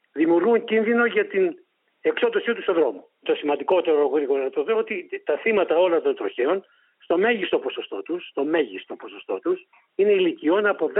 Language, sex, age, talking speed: Greek, male, 60-79, 145 wpm